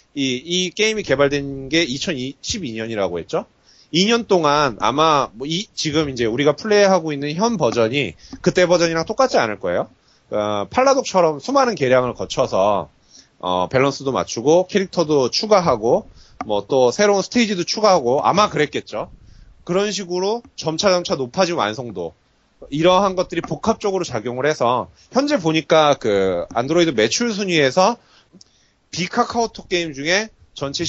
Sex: male